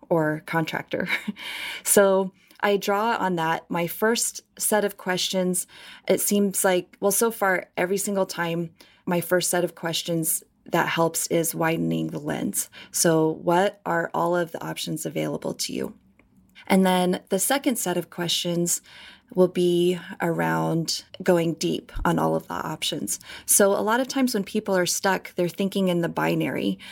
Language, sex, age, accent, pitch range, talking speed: English, female, 20-39, American, 165-195 Hz, 165 wpm